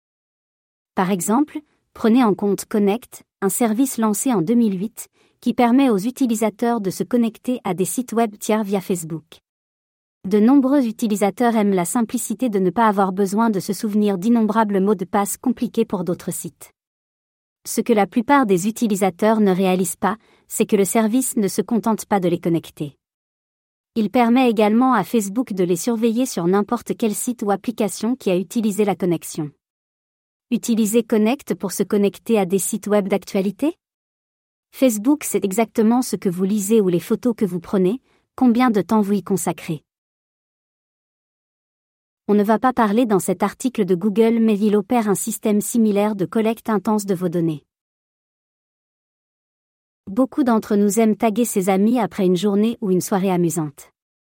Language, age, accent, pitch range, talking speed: French, 40-59, French, 190-230 Hz, 165 wpm